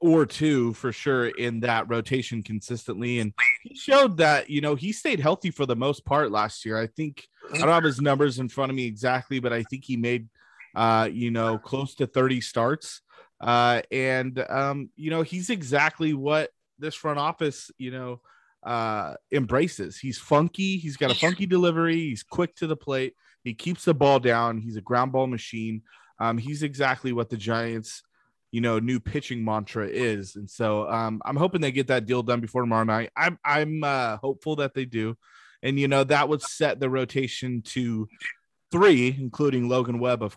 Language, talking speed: English, 195 wpm